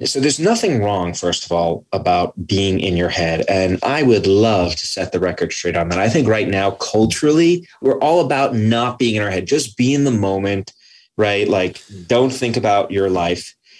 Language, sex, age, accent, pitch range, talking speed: English, male, 30-49, American, 100-135 Hz, 210 wpm